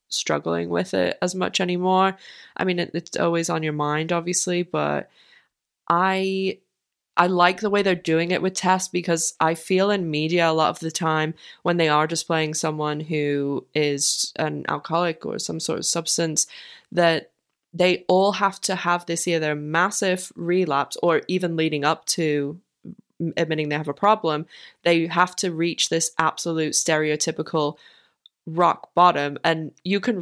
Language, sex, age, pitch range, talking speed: English, female, 20-39, 155-185 Hz, 160 wpm